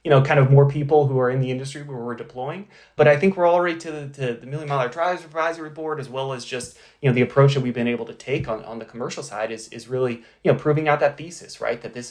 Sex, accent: male, American